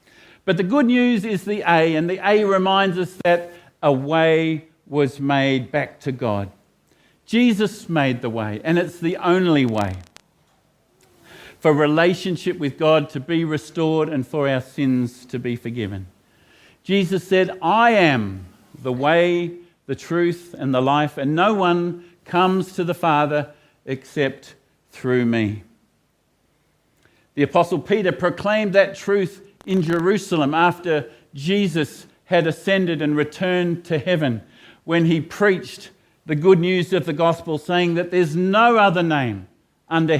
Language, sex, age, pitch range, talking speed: English, male, 50-69, 140-180 Hz, 145 wpm